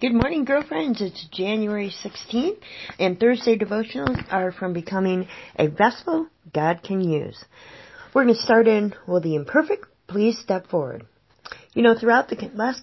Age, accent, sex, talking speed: 40-59, American, female, 155 wpm